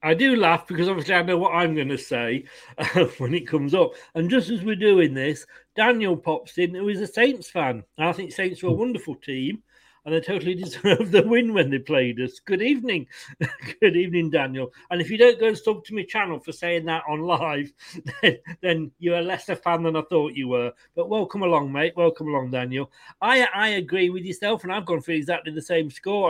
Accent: British